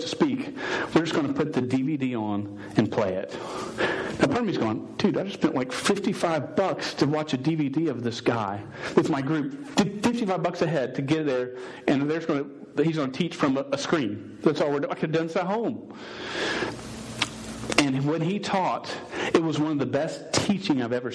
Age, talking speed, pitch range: 40-59, 220 wpm, 125-165 Hz